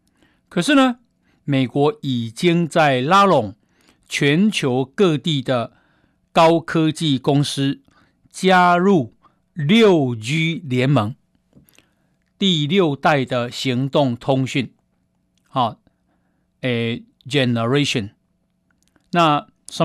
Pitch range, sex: 130-175 Hz, male